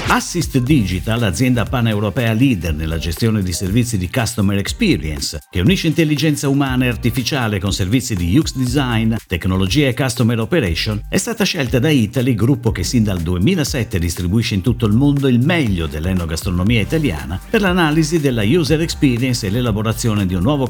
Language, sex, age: Italian, male, 50-69